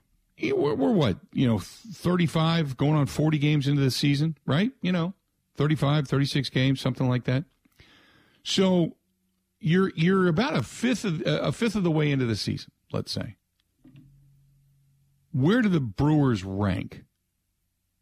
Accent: American